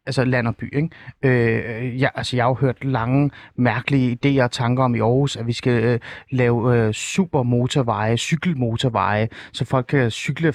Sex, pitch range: male, 120-150 Hz